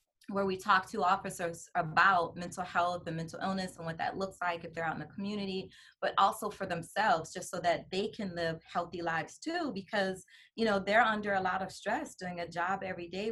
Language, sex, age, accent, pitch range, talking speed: English, female, 20-39, American, 170-200 Hz, 220 wpm